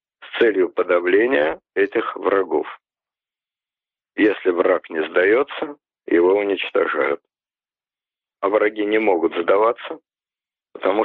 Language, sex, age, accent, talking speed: Russian, male, 50-69, native, 90 wpm